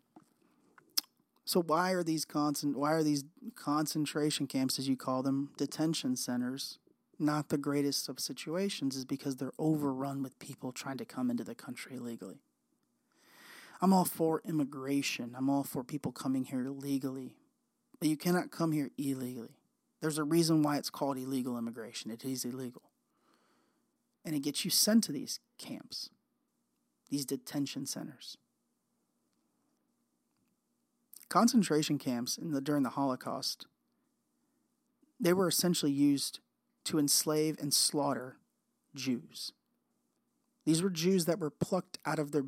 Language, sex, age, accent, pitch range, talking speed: English, male, 30-49, American, 135-170 Hz, 140 wpm